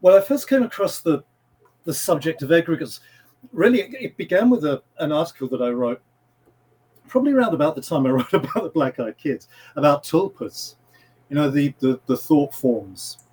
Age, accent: 40-59, British